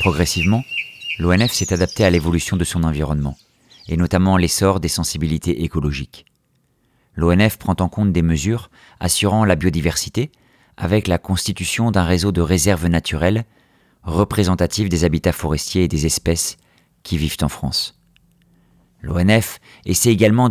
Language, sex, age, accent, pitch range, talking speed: French, male, 40-59, French, 85-105 Hz, 135 wpm